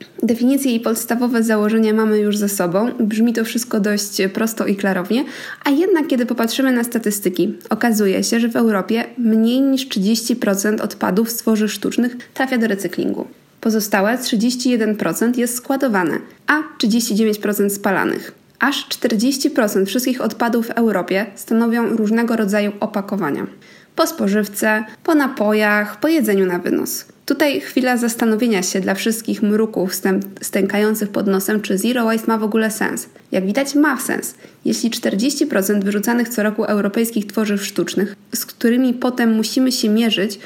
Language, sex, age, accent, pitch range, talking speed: Polish, female, 20-39, native, 205-245 Hz, 140 wpm